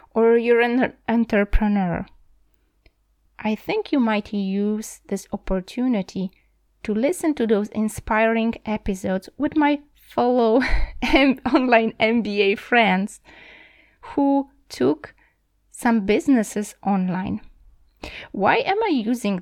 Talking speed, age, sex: 100 wpm, 20-39, female